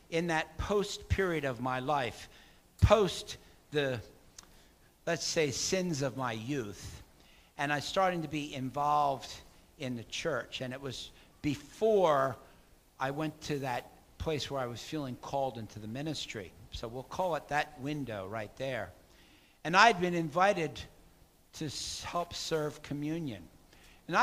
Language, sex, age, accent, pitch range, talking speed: English, male, 60-79, American, 130-165 Hz, 145 wpm